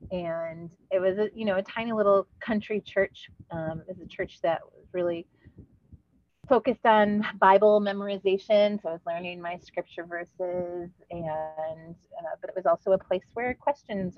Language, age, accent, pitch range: English, 30-49, American, 155-190 Hz